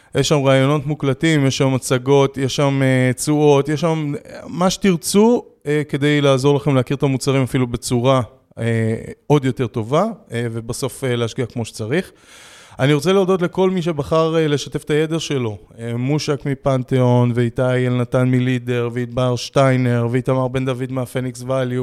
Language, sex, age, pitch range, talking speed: Hebrew, male, 20-39, 120-150 Hz, 160 wpm